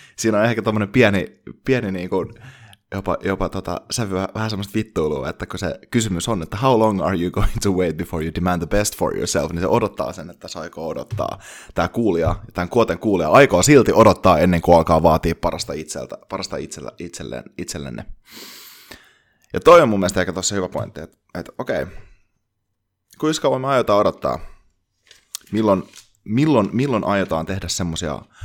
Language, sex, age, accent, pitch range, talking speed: Finnish, male, 20-39, native, 90-110 Hz, 170 wpm